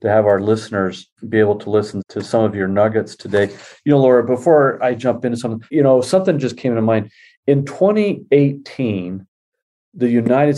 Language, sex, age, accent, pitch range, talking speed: English, male, 40-59, American, 105-135 Hz, 185 wpm